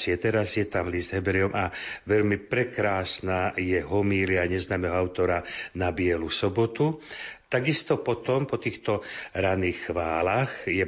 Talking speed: 120 wpm